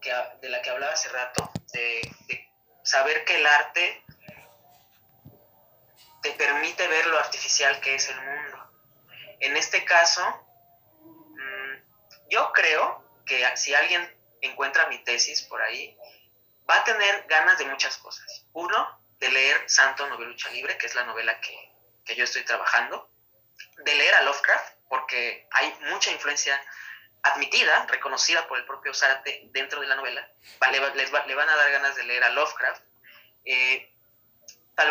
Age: 20-39